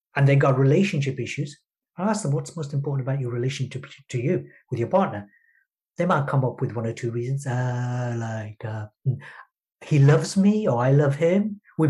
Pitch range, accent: 125-155 Hz, British